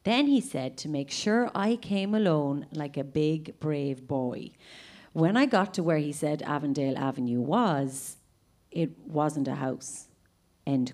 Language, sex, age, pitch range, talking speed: English, female, 40-59, 135-180 Hz, 160 wpm